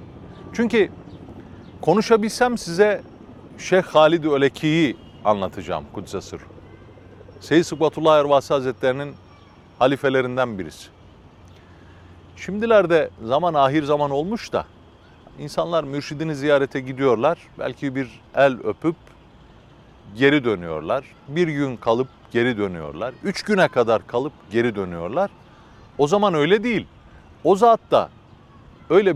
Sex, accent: male, native